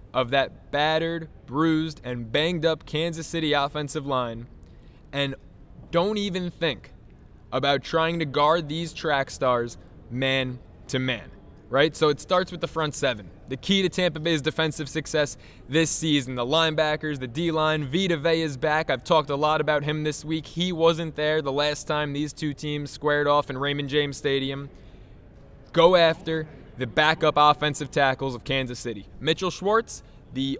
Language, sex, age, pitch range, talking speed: English, male, 20-39, 135-165 Hz, 160 wpm